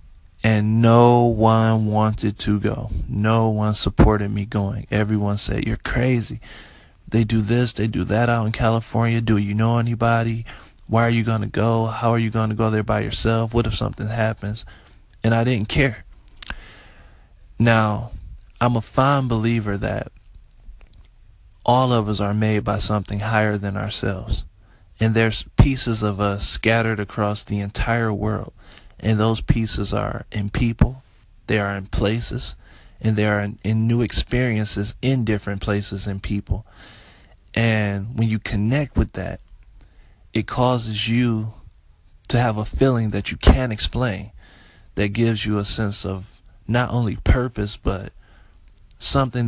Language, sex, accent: English, male, American